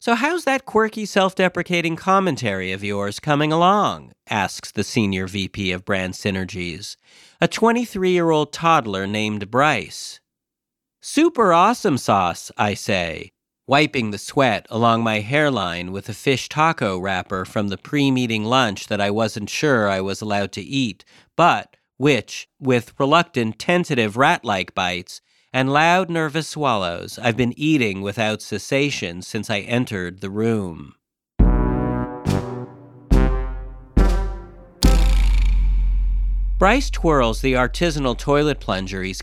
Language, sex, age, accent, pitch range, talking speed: English, male, 40-59, American, 100-150 Hz, 120 wpm